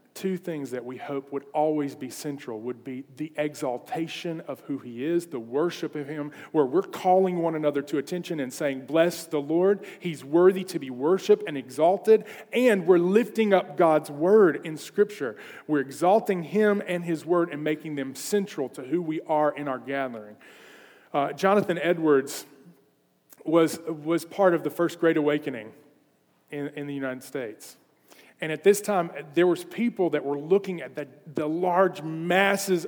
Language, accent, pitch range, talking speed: English, American, 145-180 Hz, 175 wpm